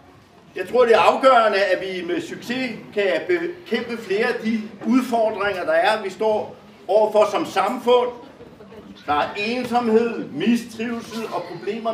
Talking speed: 135 wpm